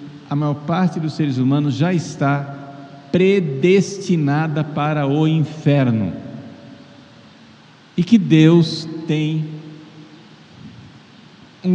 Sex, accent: male, Brazilian